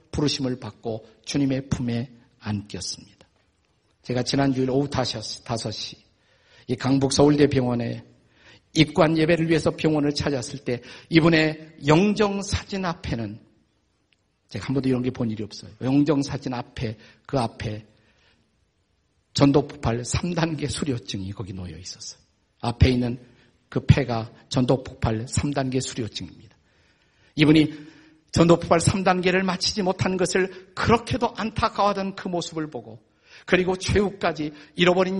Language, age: Korean, 50-69